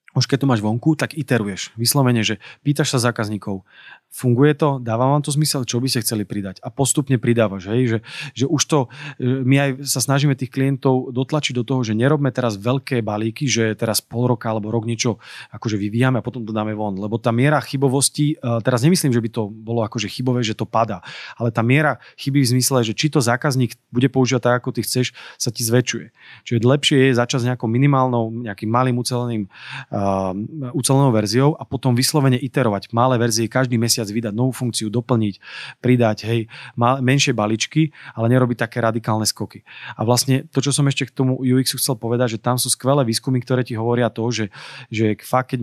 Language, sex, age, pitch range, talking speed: Slovak, male, 30-49, 115-135 Hz, 195 wpm